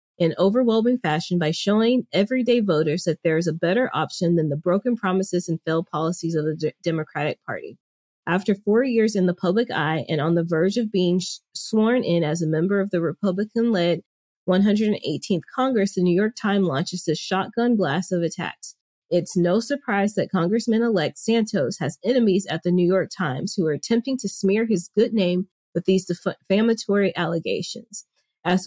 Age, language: 30-49, English